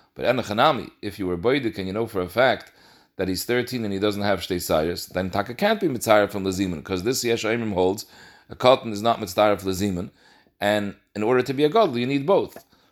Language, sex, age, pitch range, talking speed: English, male, 40-59, 100-130 Hz, 215 wpm